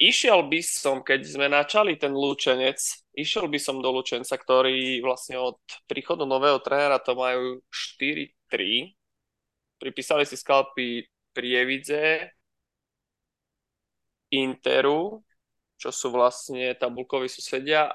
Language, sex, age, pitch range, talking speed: Slovak, male, 20-39, 130-150 Hz, 105 wpm